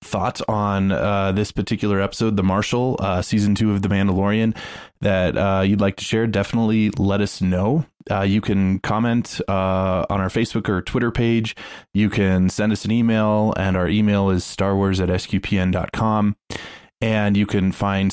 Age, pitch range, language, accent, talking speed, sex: 20-39, 95-110 Hz, English, American, 170 wpm, male